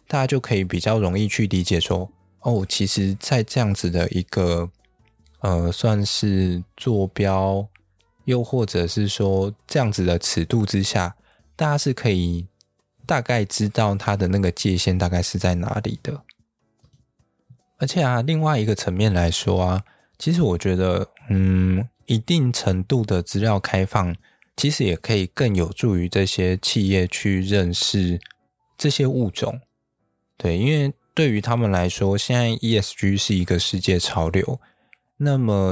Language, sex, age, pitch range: Chinese, male, 20-39, 90-115 Hz